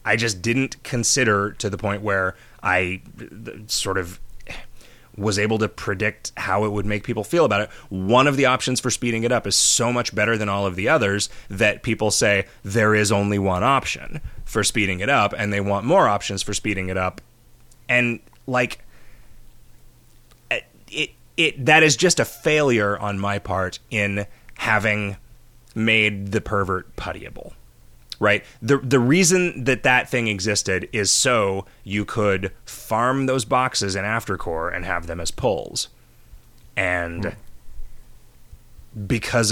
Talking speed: 155 wpm